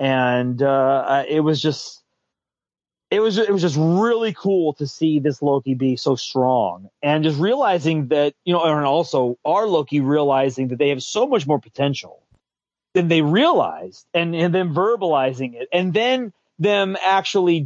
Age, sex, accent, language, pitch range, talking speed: 30-49, male, American, English, 140-180 Hz, 165 wpm